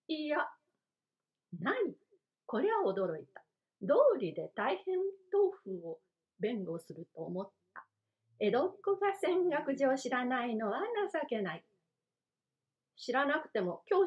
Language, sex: Japanese, female